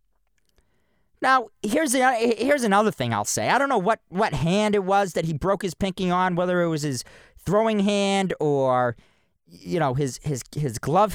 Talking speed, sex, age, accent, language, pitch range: 190 wpm, male, 40-59, American, English, 155-220 Hz